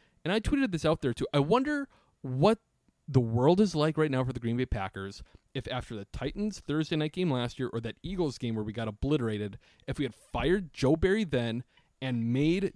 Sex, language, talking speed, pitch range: male, English, 220 wpm, 115-165 Hz